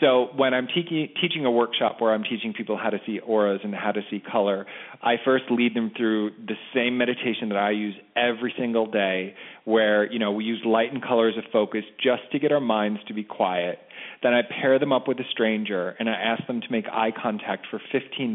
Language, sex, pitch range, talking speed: English, male, 110-130 Hz, 230 wpm